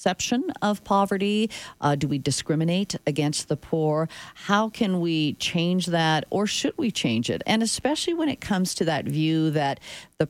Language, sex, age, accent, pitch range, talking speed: English, female, 40-59, American, 150-200 Hz, 170 wpm